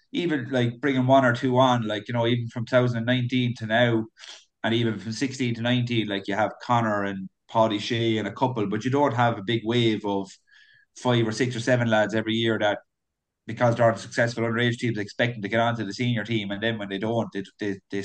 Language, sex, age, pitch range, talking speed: English, male, 30-49, 105-120 Hz, 230 wpm